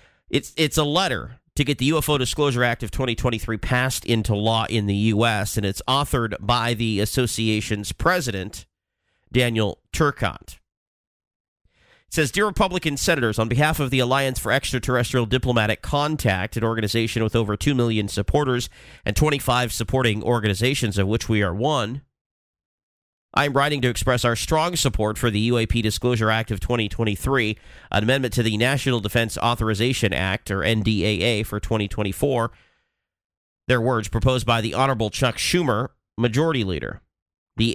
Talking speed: 150 wpm